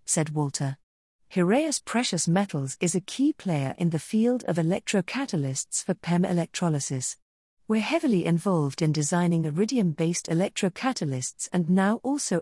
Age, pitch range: 40-59, 160-210 Hz